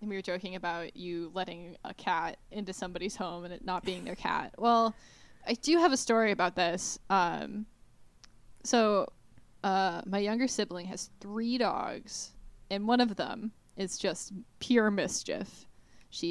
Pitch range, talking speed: 185-230 Hz, 160 wpm